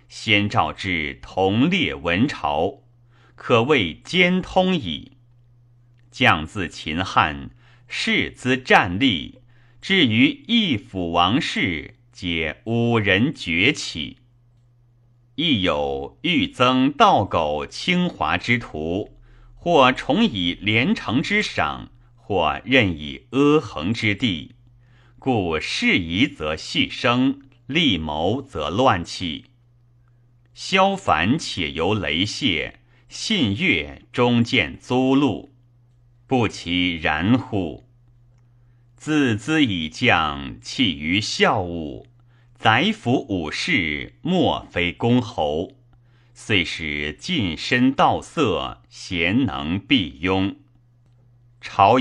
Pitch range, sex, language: 105-130 Hz, male, Chinese